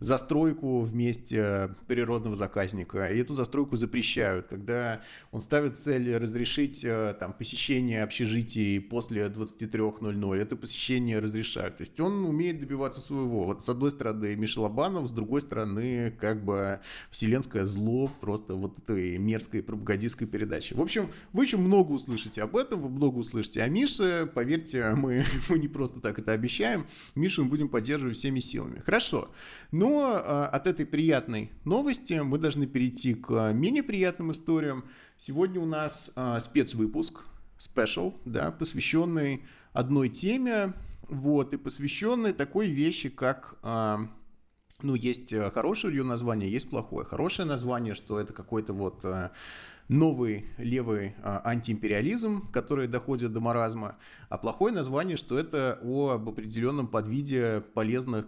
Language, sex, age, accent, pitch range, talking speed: Russian, male, 30-49, native, 110-140 Hz, 135 wpm